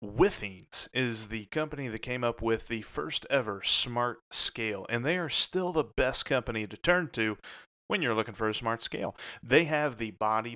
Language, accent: English, American